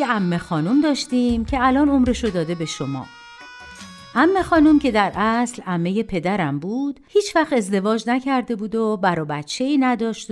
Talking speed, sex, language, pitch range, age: 165 wpm, female, Persian, 185-290 Hz, 50-69